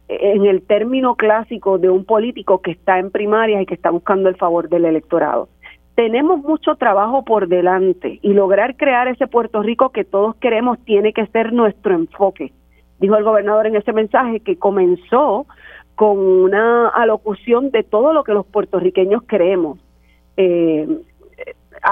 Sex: female